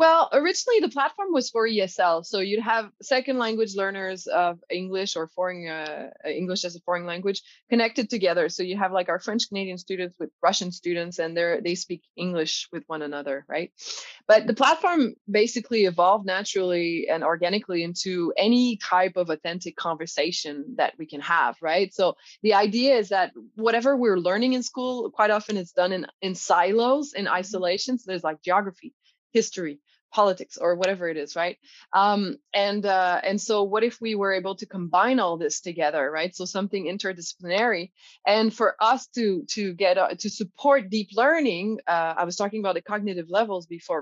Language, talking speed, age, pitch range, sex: English, 180 wpm, 20-39, 175-225 Hz, female